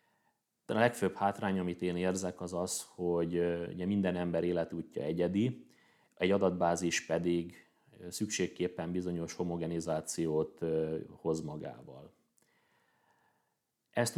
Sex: male